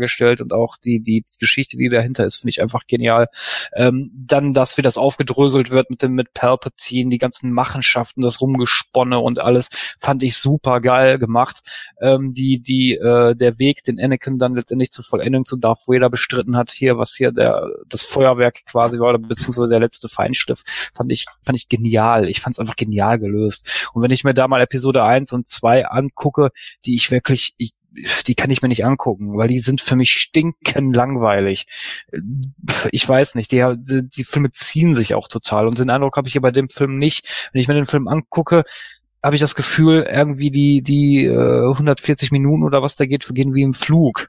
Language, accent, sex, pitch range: German, German, male, 120-140 Hz